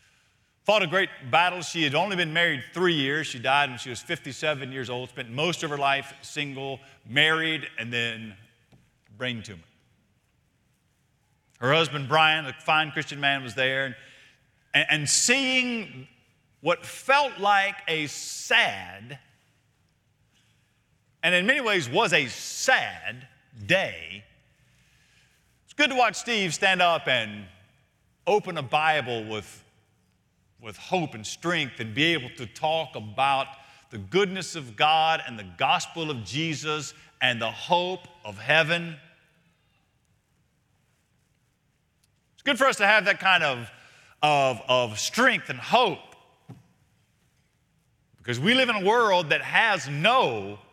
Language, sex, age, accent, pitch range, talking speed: English, male, 50-69, American, 120-160 Hz, 135 wpm